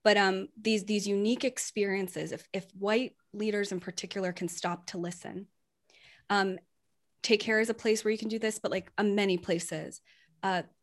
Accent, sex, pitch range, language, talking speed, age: American, female, 185-235 Hz, English, 185 wpm, 20-39